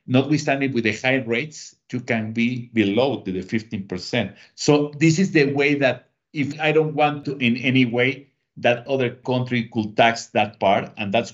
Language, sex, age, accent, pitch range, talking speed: English, male, 50-69, Mexican, 120-150 Hz, 180 wpm